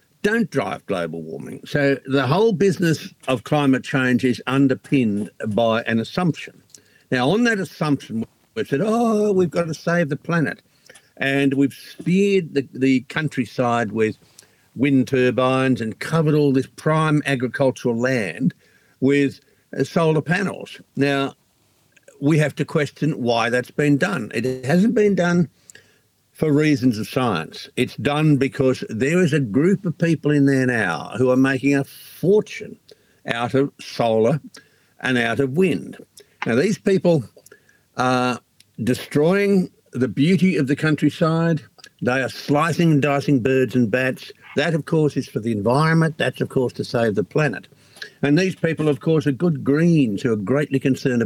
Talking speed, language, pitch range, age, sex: 155 wpm, English, 130-160 Hz, 60-79, male